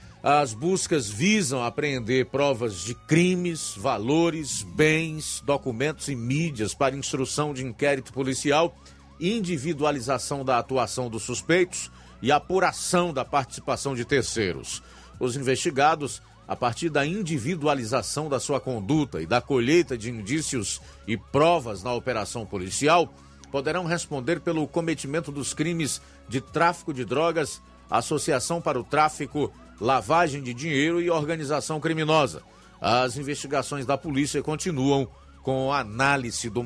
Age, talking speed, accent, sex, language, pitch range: 50-69, 125 wpm, Brazilian, male, Portuguese, 115-155 Hz